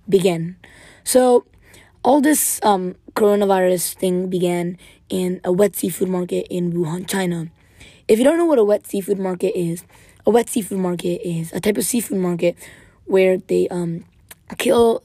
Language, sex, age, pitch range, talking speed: English, female, 20-39, 180-210 Hz, 160 wpm